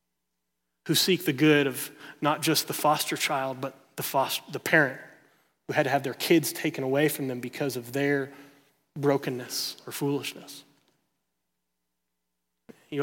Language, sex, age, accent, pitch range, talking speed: English, male, 30-49, American, 130-155 Hz, 145 wpm